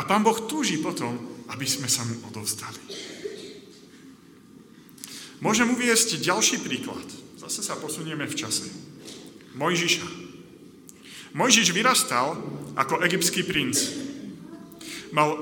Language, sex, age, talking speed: Slovak, male, 40-59, 95 wpm